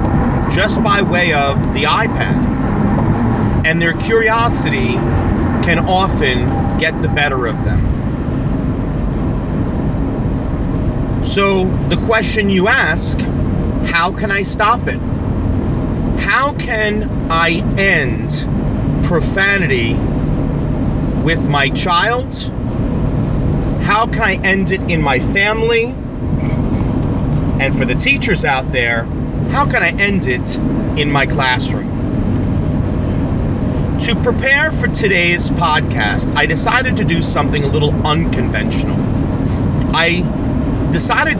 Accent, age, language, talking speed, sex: American, 40-59, English, 105 wpm, male